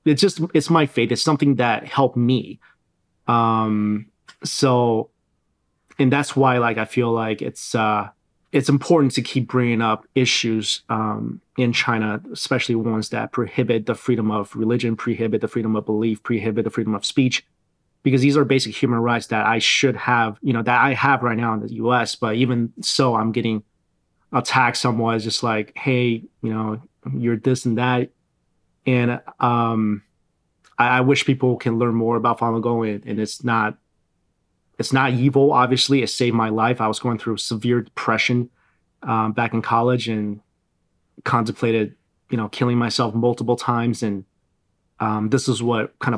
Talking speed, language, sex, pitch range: 175 wpm, English, male, 110-125 Hz